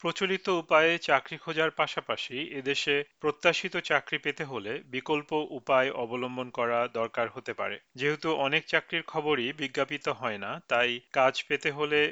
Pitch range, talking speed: 130-160 Hz, 140 wpm